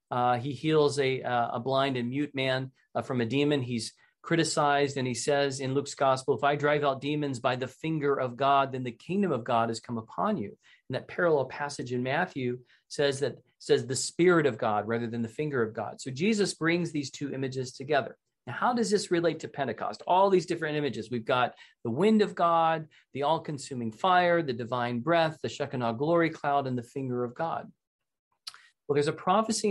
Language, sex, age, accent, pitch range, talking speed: English, male, 40-59, American, 130-160 Hz, 210 wpm